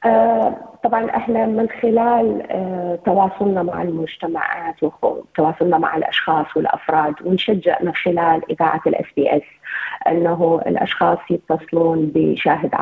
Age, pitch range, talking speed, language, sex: 30-49, 160-205 Hz, 110 wpm, Arabic, female